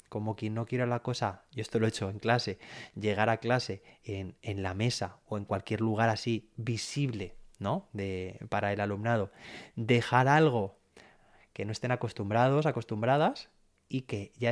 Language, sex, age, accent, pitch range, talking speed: Spanish, male, 20-39, Spanish, 105-135 Hz, 170 wpm